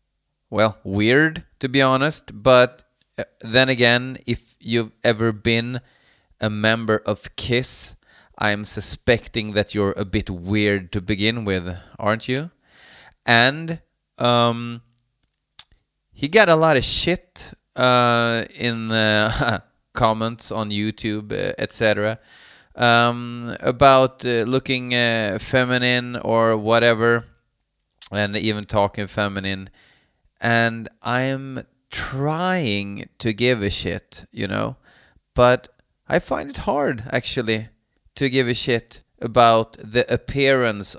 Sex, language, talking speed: male, Swedish, 115 wpm